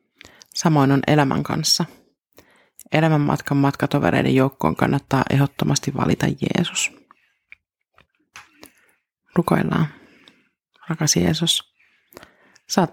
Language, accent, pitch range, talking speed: Finnish, native, 140-165 Hz, 75 wpm